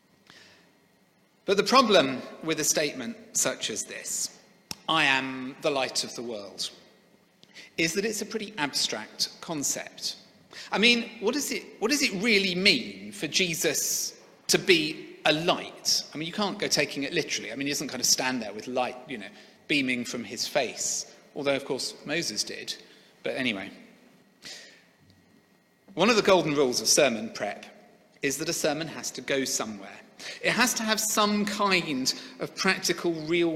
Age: 40-59